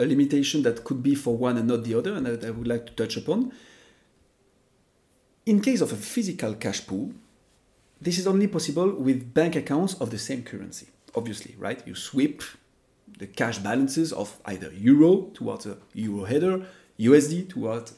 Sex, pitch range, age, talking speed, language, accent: male, 115-180 Hz, 40-59, 175 wpm, English, French